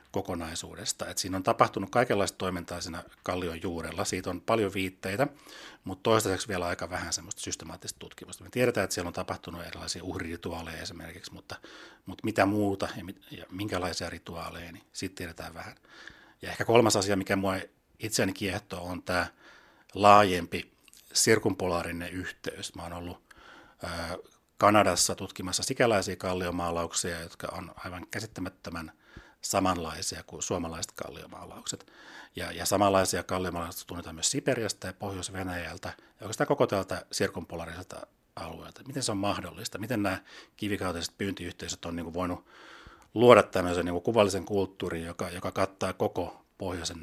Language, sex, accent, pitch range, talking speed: Finnish, male, native, 85-100 Hz, 140 wpm